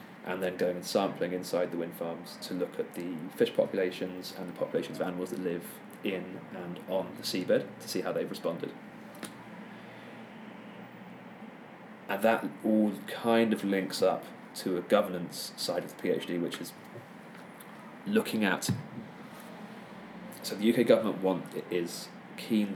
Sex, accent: male, British